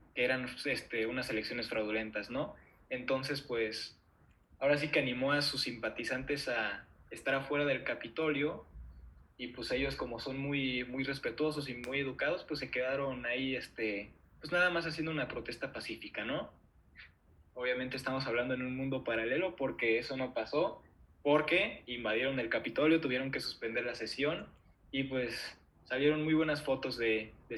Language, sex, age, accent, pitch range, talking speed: Spanish, male, 20-39, Mexican, 115-145 Hz, 160 wpm